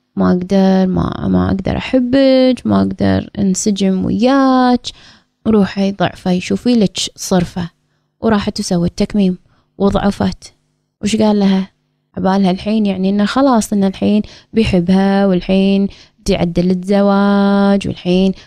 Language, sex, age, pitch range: Arabic, female, 20-39, 185-225 Hz